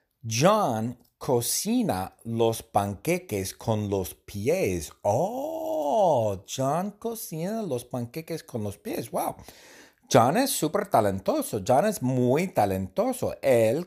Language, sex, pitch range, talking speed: Spanish, male, 100-150 Hz, 110 wpm